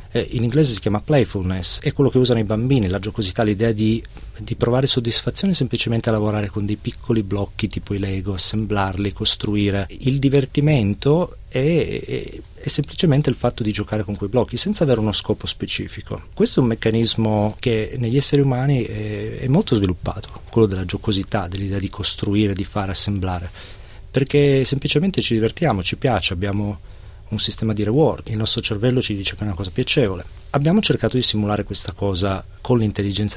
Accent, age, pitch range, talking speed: native, 40-59, 100-125 Hz, 175 wpm